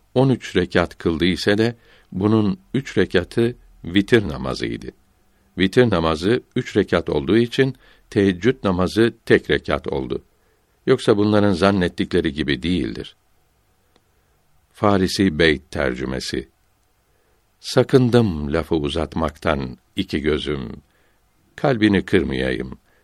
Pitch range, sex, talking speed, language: 80-100 Hz, male, 95 wpm, Turkish